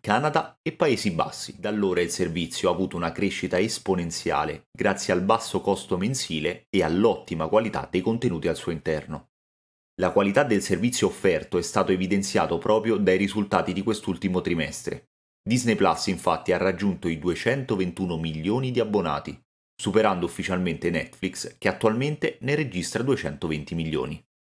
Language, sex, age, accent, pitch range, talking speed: Italian, male, 30-49, native, 85-110 Hz, 145 wpm